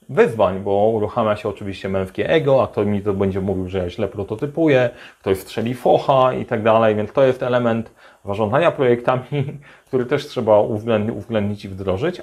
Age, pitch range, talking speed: 30-49, 105-130 Hz, 170 wpm